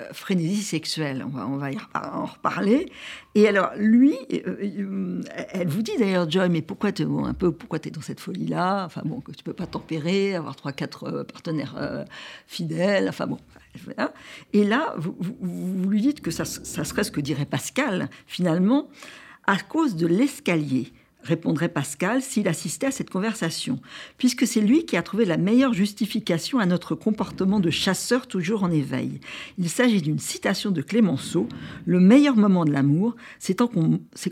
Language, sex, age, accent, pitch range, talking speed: French, female, 60-79, French, 165-225 Hz, 180 wpm